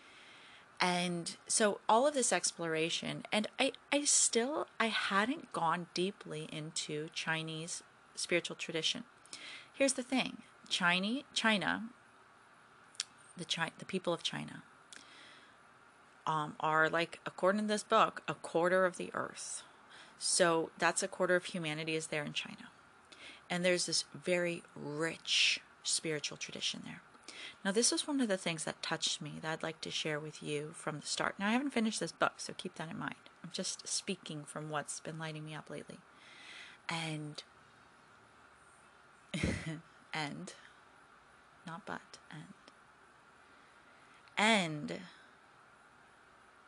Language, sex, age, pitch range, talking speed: English, female, 30-49, 160-205 Hz, 135 wpm